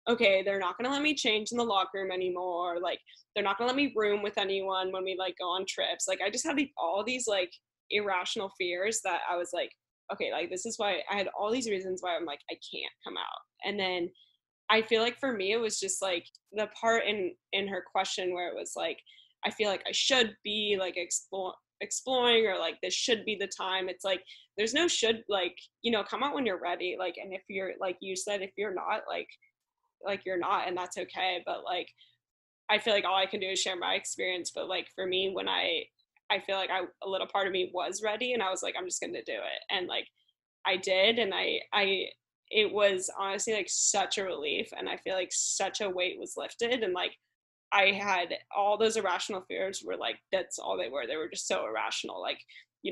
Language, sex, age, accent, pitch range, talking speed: English, female, 10-29, American, 185-225 Hz, 235 wpm